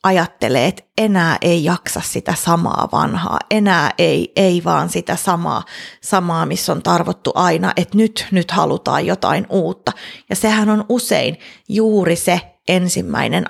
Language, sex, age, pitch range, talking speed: Finnish, female, 30-49, 175-210 Hz, 140 wpm